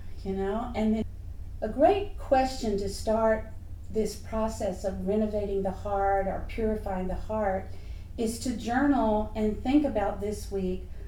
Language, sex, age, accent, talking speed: English, female, 50-69, American, 145 wpm